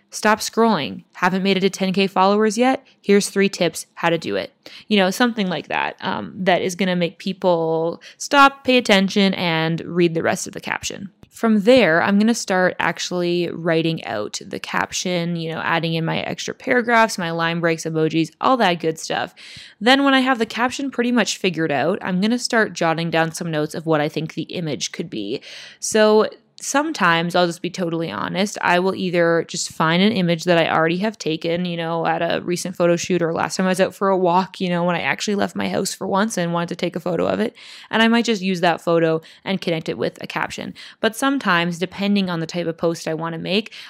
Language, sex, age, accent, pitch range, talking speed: English, female, 20-39, American, 165-200 Hz, 230 wpm